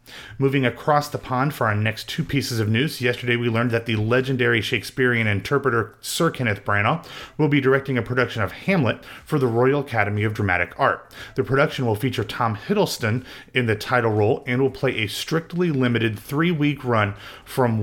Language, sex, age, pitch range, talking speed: English, male, 30-49, 105-130 Hz, 185 wpm